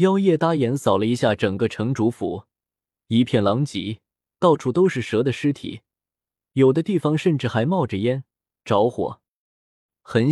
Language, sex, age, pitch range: Chinese, male, 20-39, 105-165 Hz